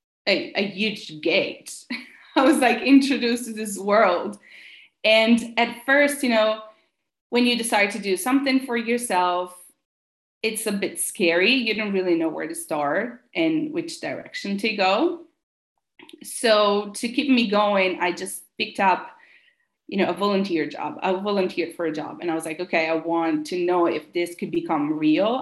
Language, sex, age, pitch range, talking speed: English, female, 30-49, 180-275 Hz, 170 wpm